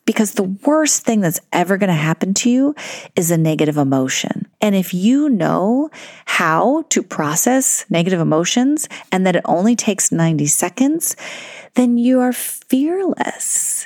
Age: 30-49